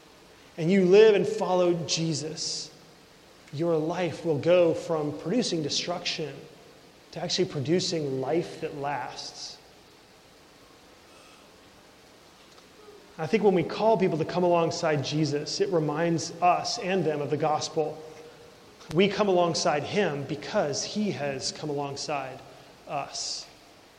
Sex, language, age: male, English, 30-49